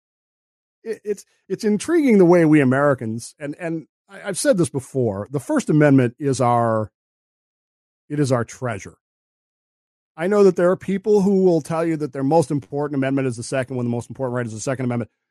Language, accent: English, American